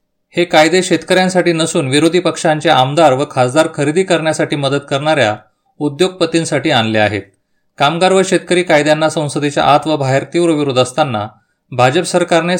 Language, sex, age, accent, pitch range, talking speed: Marathi, male, 30-49, native, 130-165 Hz, 135 wpm